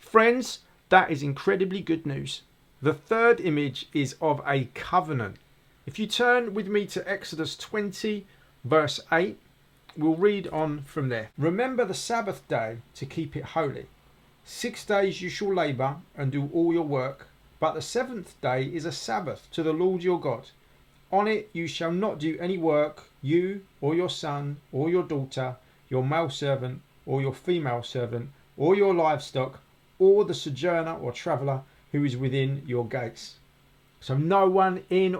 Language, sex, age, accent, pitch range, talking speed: English, male, 40-59, British, 140-190 Hz, 165 wpm